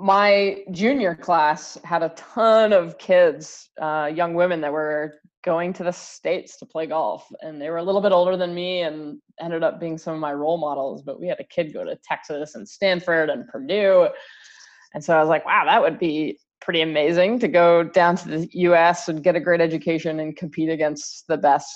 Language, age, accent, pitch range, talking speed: English, 20-39, American, 155-185 Hz, 210 wpm